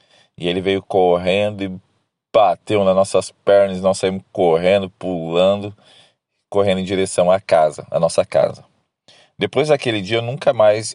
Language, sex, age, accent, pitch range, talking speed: Portuguese, male, 40-59, Brazilian, 90-110 Hz, 140 wpm